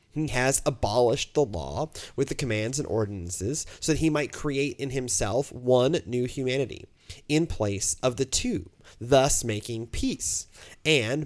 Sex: male